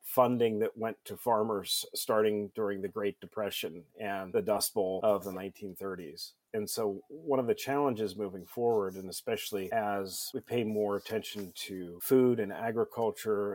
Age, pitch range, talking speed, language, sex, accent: 40-59, 100-125 Hz, 160 wpm, English, male, American